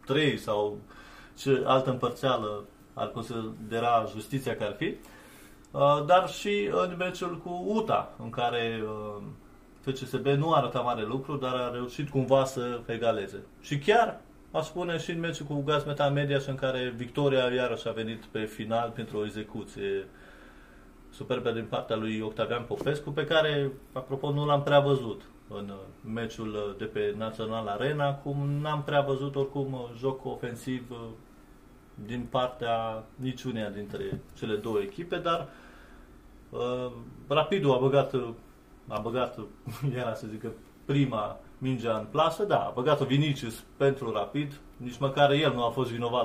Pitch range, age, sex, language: 110-145 Hz, 30-49, male, Romanian